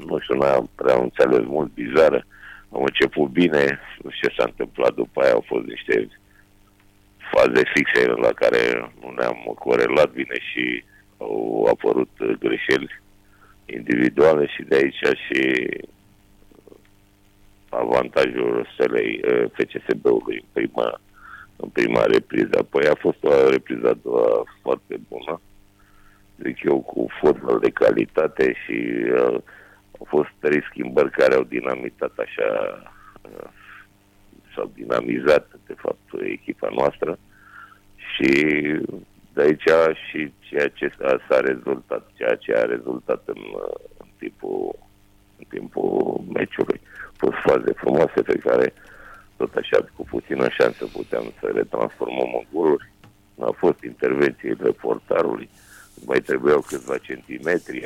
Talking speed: 120 wpm